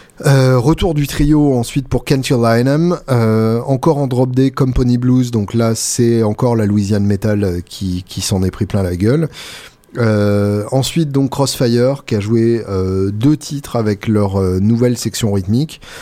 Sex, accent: male, French